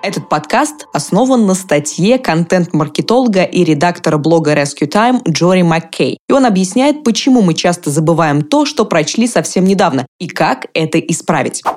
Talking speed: 150 wpm